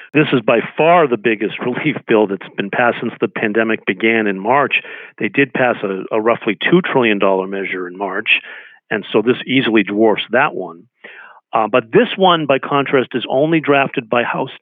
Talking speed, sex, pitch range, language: 190 wpm, male, 110-140 Hz, English